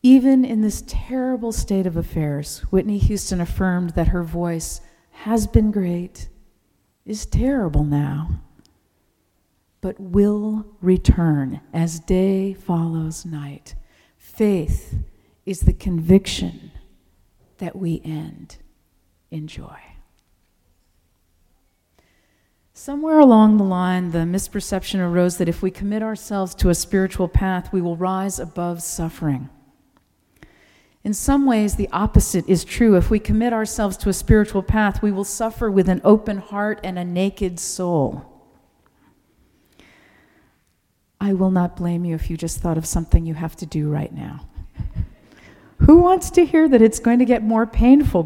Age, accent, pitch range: 50-69, American, 160-210 Hz